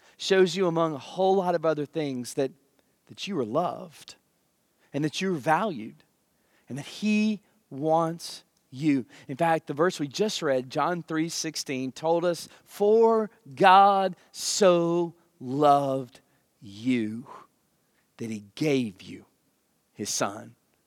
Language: English